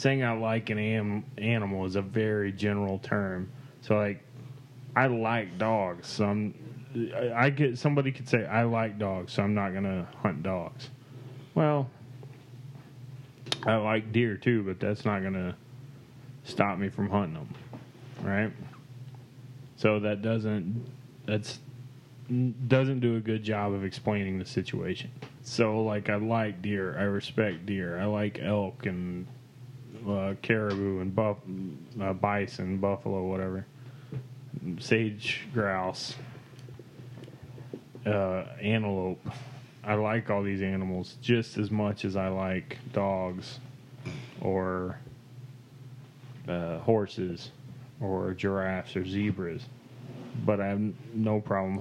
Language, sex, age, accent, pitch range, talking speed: English, male, 20-39, American, 100-130 Hz, 125 wpm